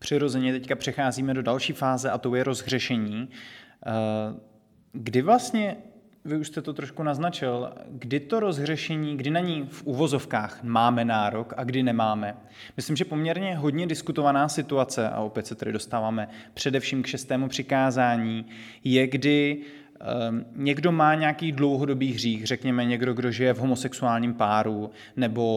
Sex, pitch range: male, 120-150 Hz